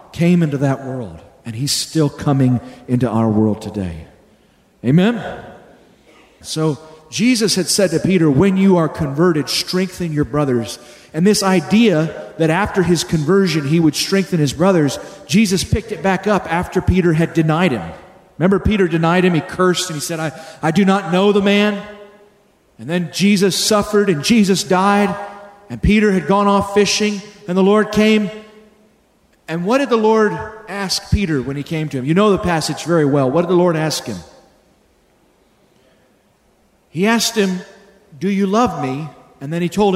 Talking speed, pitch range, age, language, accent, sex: 175 wpm, 155-200 Hz, 40-59, English, American, male